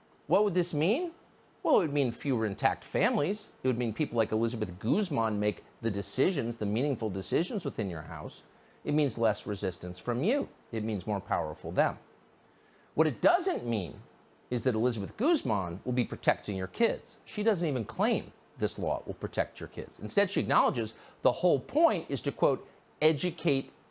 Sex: male